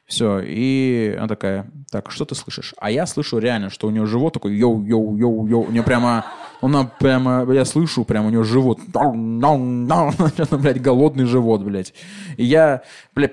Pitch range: 115-155 Hz